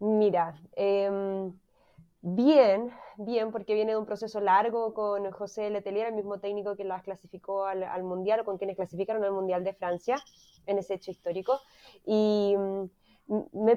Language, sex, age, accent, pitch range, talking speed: Spanish, female, 20-39, Argentinian, 195-240 Hz, 160 wpm